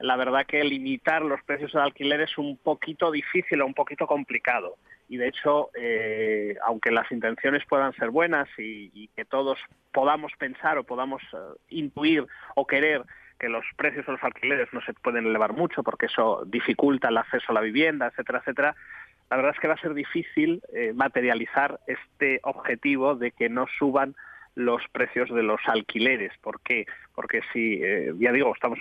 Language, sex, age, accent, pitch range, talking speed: Spanish, male, 30-49, Spanish, 125-150 Hz, 185 wpm